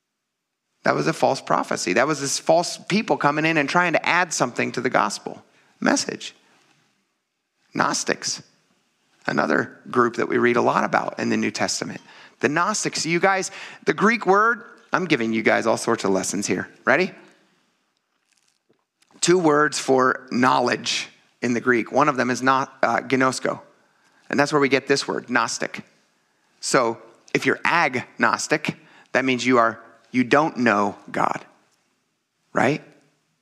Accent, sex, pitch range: American, male, 125-185 Hz